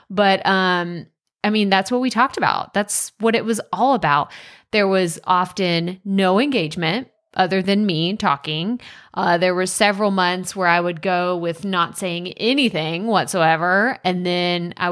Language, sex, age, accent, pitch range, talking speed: English, female, 20-39, American, 180-220 Hz, 165 wpm